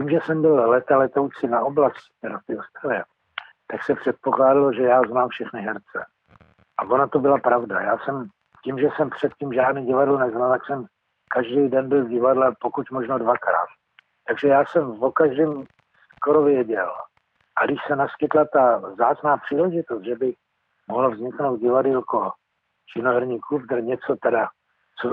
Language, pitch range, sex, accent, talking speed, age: Czech, 130-150 Hz, male, native, 160 wpm, 60-79